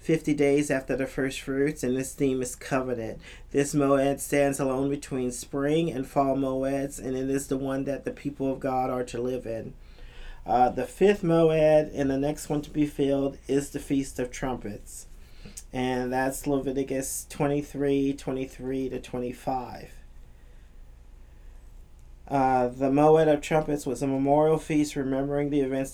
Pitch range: 125-145 Hz